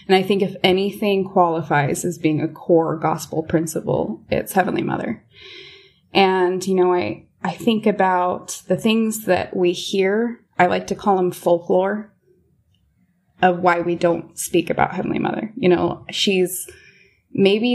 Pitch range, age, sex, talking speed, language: 170-200 Hz, 20-39, female, 150 wpm, English